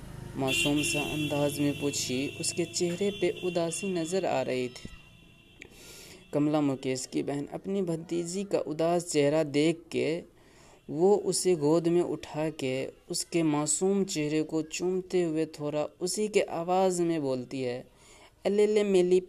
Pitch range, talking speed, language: 145-190 Hz, 140 wpm, Hindi